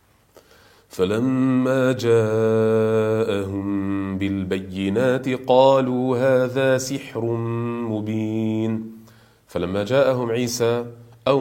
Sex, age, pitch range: male, 40-59, 105-135 Hz